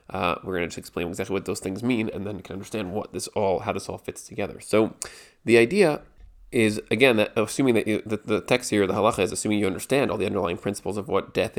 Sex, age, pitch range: male, 30-49, 100-115 Hz